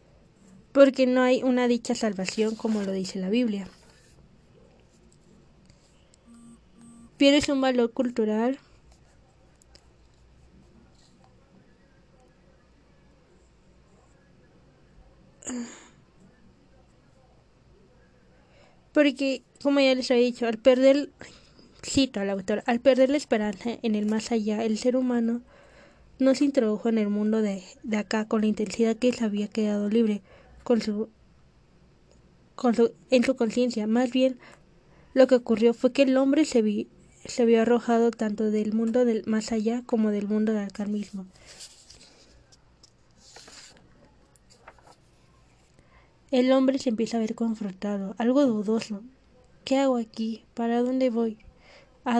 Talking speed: 115 wpm